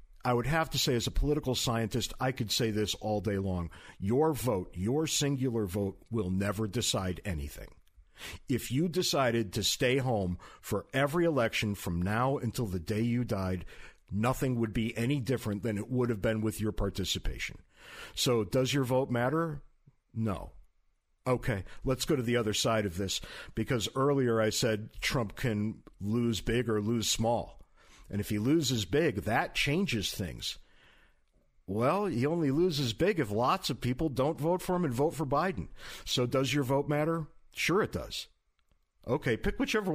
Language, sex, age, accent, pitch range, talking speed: English, male, 50-69, American, 105-140 Hz, 175 wpm